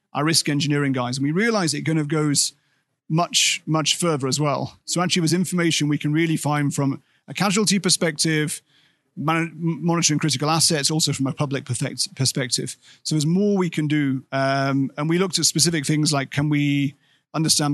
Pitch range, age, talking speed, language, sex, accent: 140-165 Hz, 30-49, 185 wpm, Portuguese, male, British